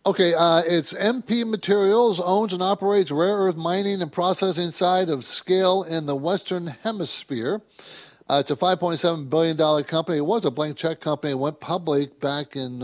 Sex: male